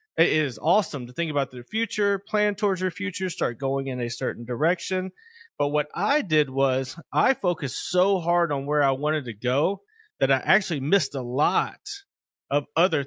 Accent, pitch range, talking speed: American, 140-190 Hz, 190 wpm